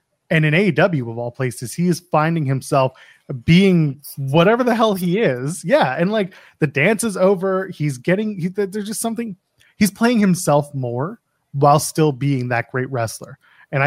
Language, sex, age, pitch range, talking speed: English, male, 20-39, 130-175 Hz, 175 wpm